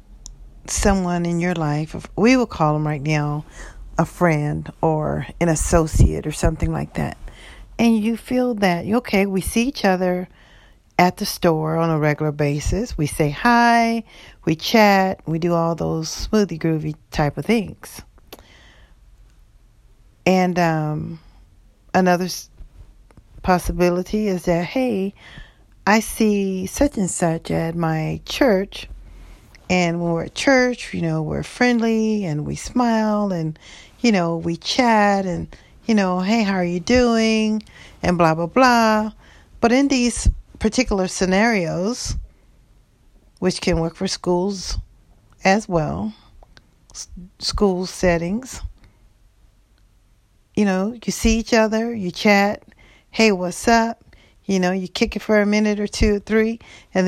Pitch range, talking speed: 160-215 Hz, 135 wpm